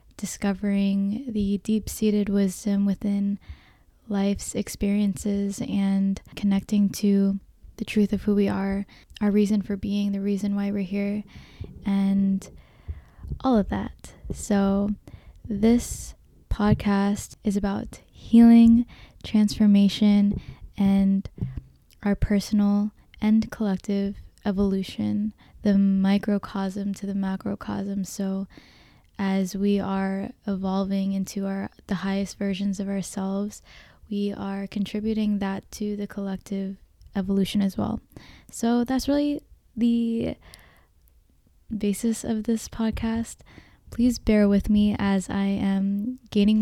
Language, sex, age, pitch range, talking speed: English, female, 10-29, 195-210 Hz, 110 wpm